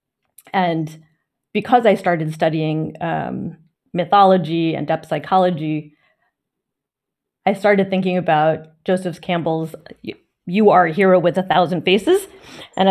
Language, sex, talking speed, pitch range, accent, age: English, female, 115 wpm, 165-195 Hz, American, 30-49